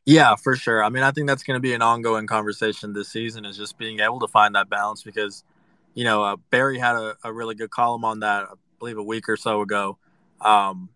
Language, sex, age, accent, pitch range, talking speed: English, male, 20-39, American, 110-135 Hz, 245 wpm